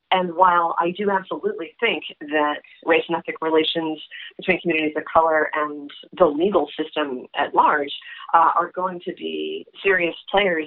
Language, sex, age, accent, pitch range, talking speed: English, female, 30-49, American, 155-185 Hz, 155 wpm